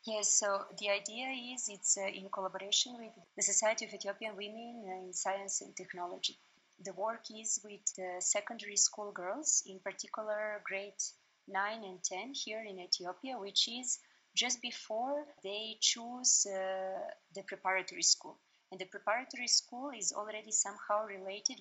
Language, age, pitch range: English, 30-49, 195-240 Hz